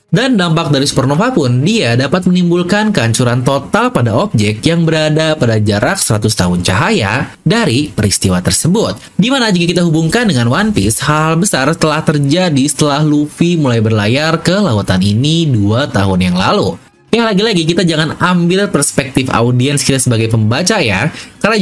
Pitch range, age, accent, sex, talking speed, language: 120-180 Hz, 20-39, Indonesian, male, 155 wpm, English